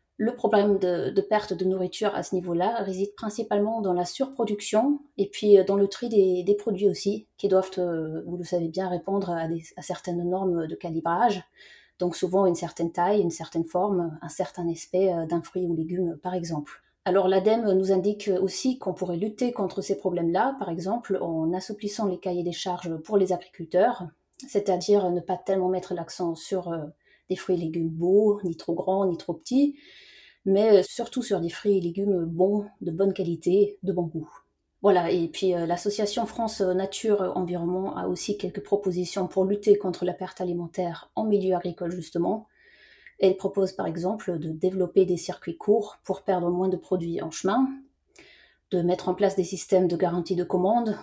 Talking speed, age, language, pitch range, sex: 180 wpm, 30-49, French, 175-200 Hz, female